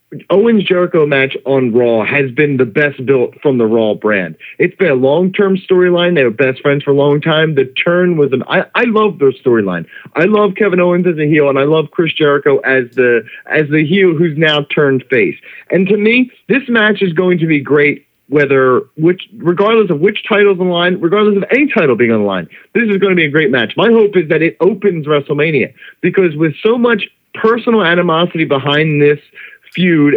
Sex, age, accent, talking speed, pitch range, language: male, 40-59, American, 215 wpm, 145-200 Hz, English